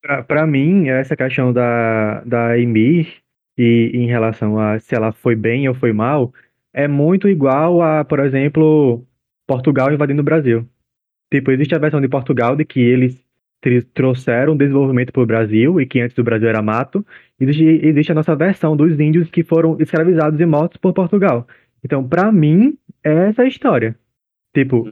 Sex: male